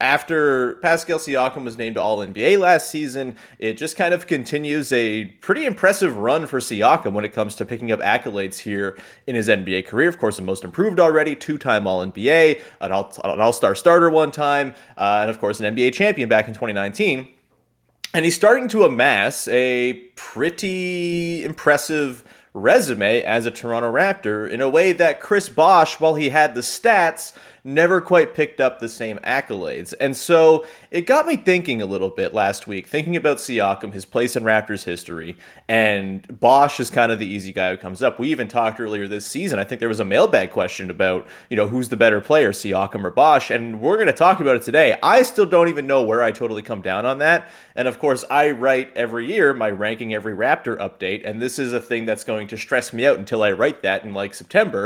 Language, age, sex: English, 30-49, male